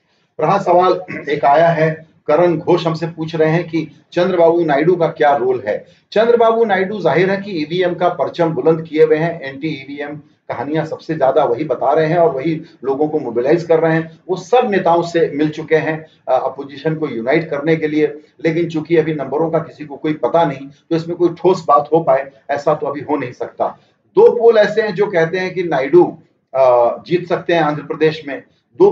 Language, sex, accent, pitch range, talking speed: English, male, Indian, 145-175 Hz, 130 wpm